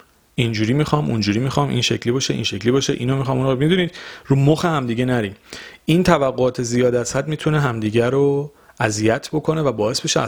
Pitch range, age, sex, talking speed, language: 115-150 Hz, 40-59, male, 185 wpm, Persian